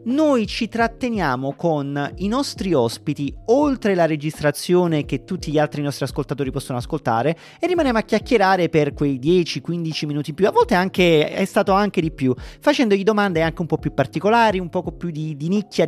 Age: 30-49